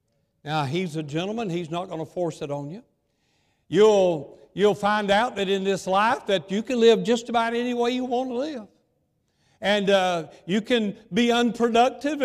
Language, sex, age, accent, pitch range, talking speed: English, male, 60-79, American, 175-235 Hz, 185 wpm